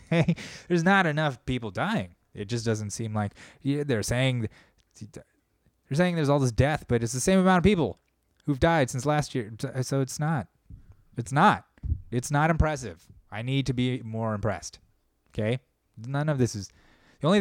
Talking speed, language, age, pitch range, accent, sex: 185 wpm, English, 20-39, 105-130 Hz, American, male